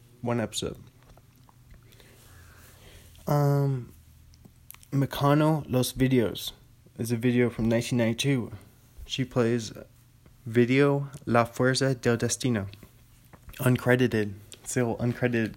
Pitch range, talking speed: 115-130 Hz, 80 wpm